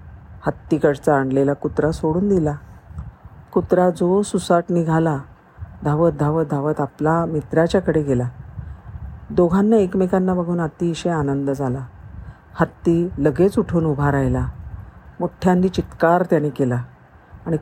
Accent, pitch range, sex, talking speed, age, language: native, 135-185 Hz, female, 105 wpm, 50-69, Marathi